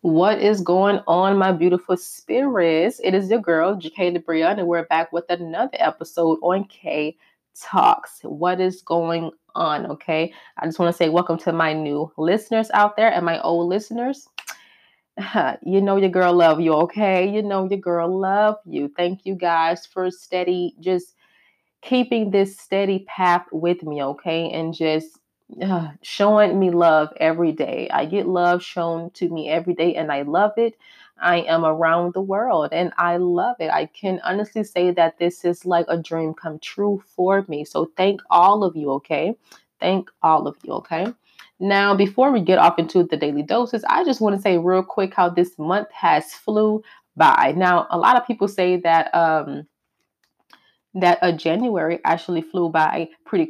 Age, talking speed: 20-39, 180 wpm